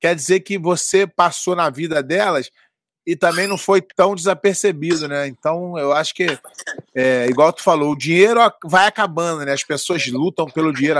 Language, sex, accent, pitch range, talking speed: Portuguese, male, Brazilian, 155-190 Hz, 180 wpm